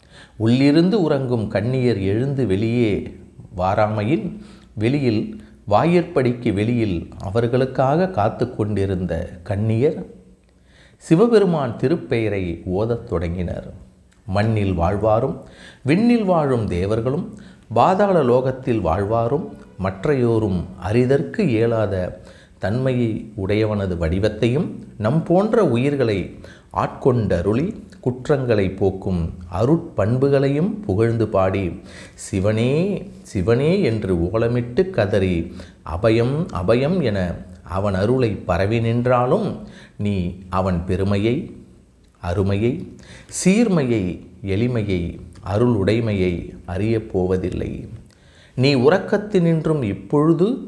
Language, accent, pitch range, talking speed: Tamil, native, 95-135 Hz, 75 wpm